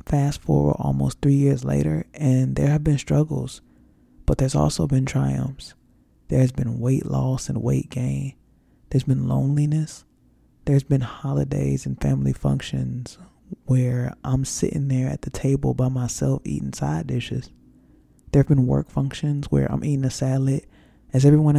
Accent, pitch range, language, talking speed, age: American, 110-140 Hz, English, 155 wpm, 20-39